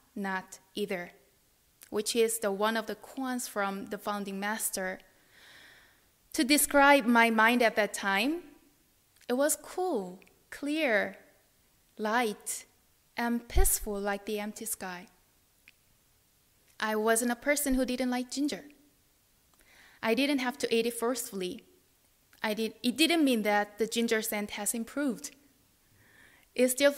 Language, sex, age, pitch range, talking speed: English, female, 20-39, 205-250 Hz, 130 wpm